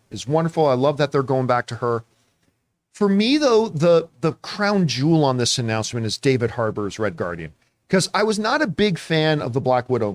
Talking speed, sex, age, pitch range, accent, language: 215 wpm, male, 40-59, 135-185 Hz, American, English